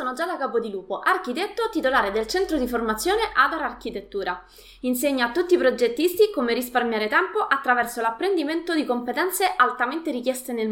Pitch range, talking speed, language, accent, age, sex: 225-315 Hz, 145 wpm, Italian, native, 20-39, female